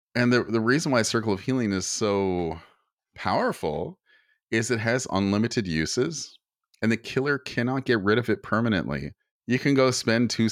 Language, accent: English, American